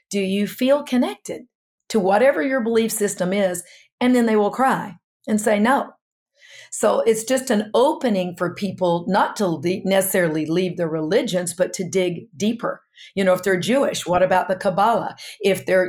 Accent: American